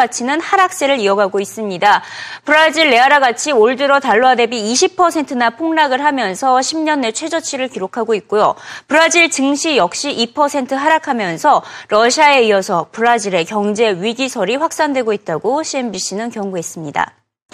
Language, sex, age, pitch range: Korean, female, 30-49, 220-320 Hz